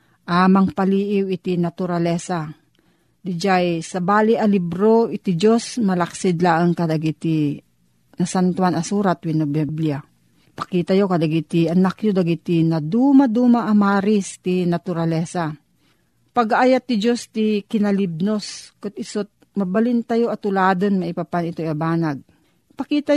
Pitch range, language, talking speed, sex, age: 175-225 Hz, Filipino, 115 wpm, female, 40-59